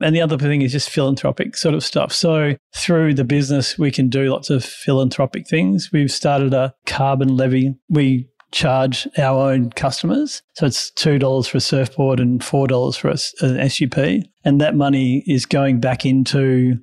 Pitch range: 130-150 Hz